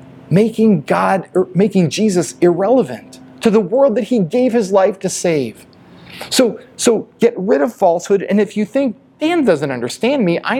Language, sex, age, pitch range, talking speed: English, male, 40-59, 130-200 Hz, 175 wpm